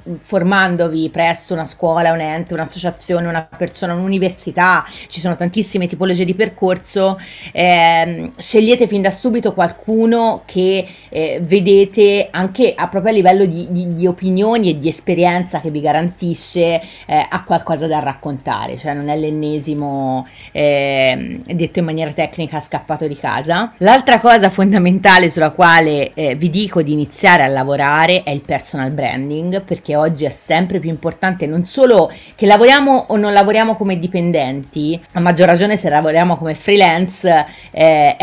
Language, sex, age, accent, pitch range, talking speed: Italian, female, 30-49, native, 160-190 Hz, 150 wpm